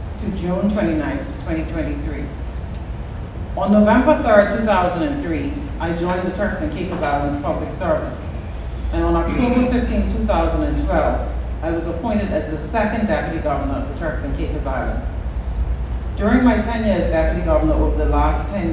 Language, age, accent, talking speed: English, 40-59, American, 145 wpm